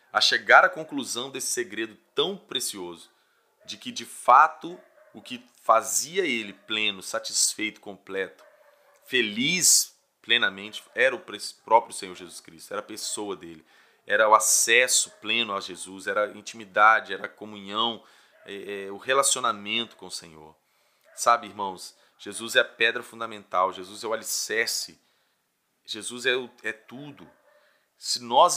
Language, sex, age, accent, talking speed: Portuguese, male, 30-49, Brazilian, 145 wpm